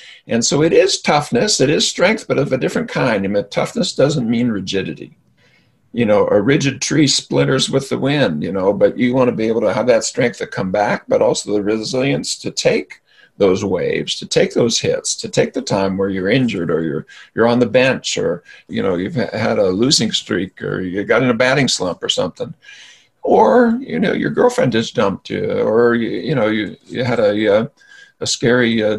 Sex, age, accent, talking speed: male, 50-69, American, 220 wpm